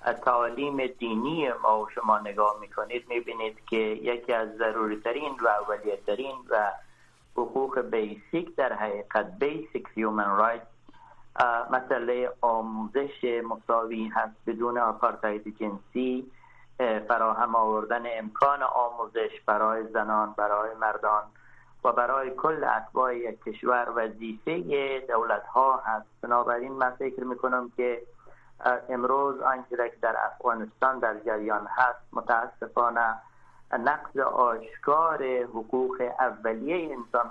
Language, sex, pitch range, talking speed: Persian, male, 110-130 Hz, 100 wpm